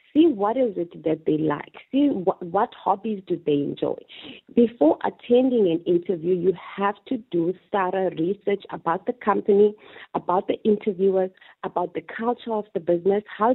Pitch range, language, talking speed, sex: 175-215 Hz, English, 165 wpm, female